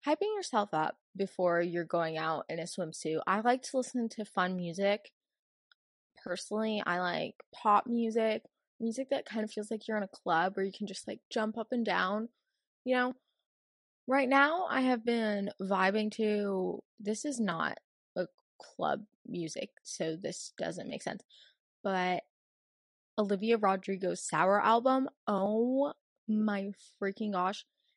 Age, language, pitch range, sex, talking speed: 20-39, English, 195-260 Hz, female, 150 wpm